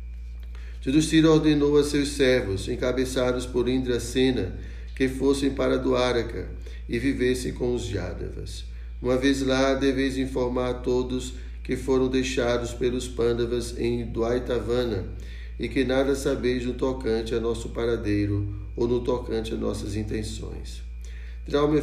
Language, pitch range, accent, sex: Portuguese, 95-130 Hz, Brazilian, male